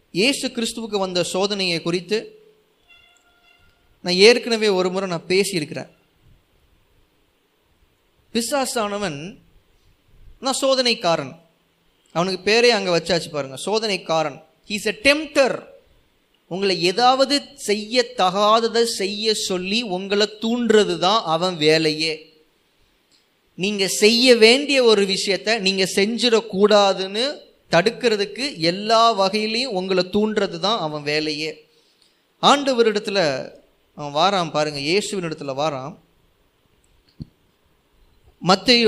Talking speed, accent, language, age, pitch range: 85 wpm, native, Tamil, 20-39, 180-230 Hz